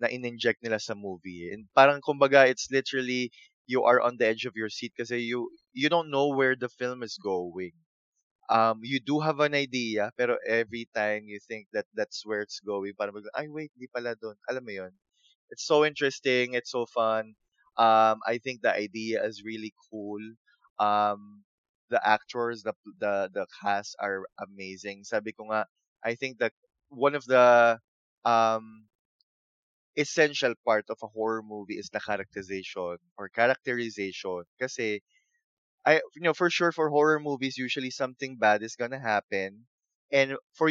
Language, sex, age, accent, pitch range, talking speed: Filipino, male, 20-39, native, 105-135 Hz, 170 wpm